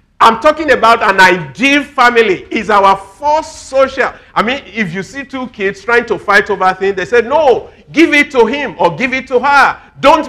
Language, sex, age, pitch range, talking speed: English, male, 50-69, 210-285 Hz, 205 wpm